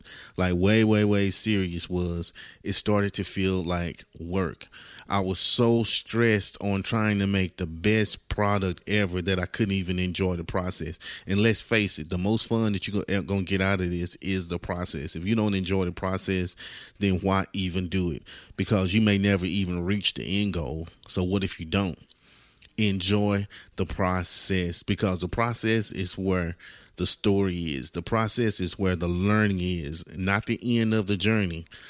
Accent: American